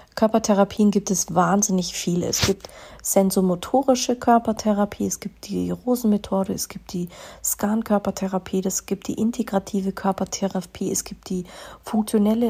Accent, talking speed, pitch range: German, 125 wpm, 185-215 Hz